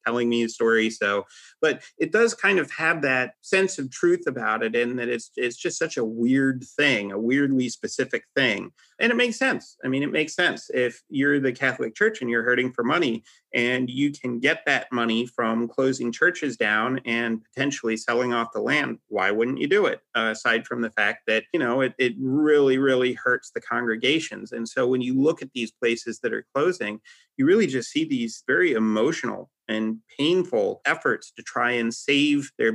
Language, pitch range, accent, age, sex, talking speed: English, 115-135 Hz, American, 30-49, male, 205 wpm